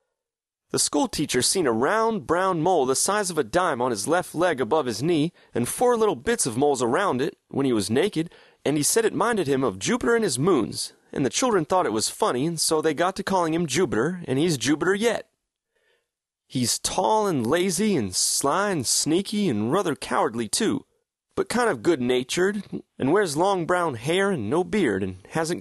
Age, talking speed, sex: 30-49, 205 wpm, male